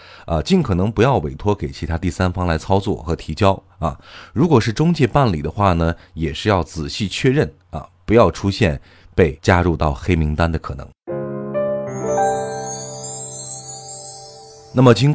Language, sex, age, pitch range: Chinese, male, 30-49, 80-115 Hz